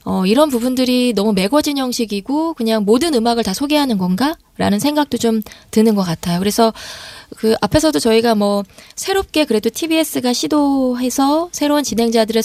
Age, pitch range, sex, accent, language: 20-39, 200-275 Hz, female, native, Korean